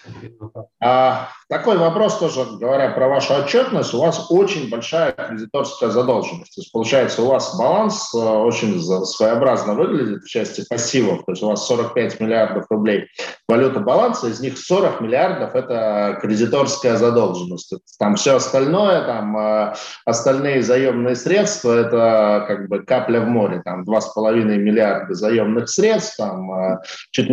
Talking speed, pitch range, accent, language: 140 wpm, 105-150 Hz, native, Russian